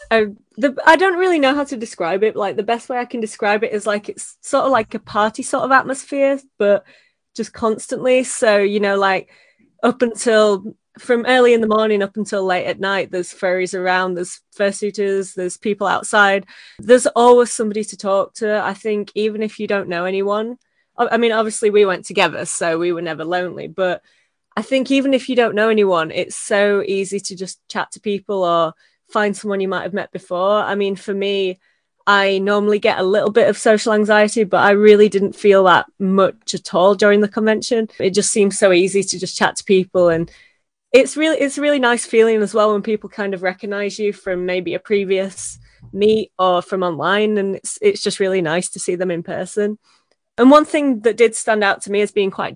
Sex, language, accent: female, English, British